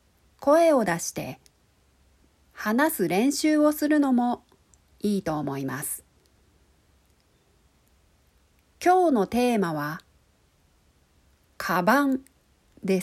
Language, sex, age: Japanese, female, 40-59